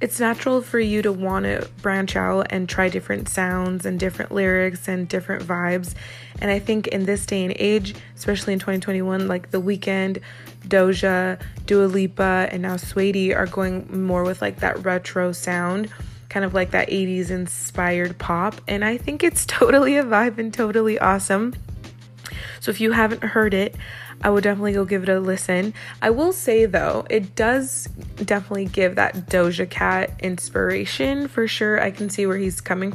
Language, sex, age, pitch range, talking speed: English, female, 20-39, 175-205 Hz, 180 wpm